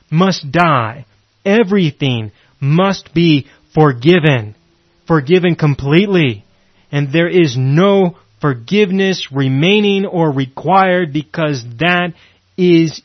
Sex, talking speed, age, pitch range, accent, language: male, 85 wpm, 30-49, 130-180 Hz, American, English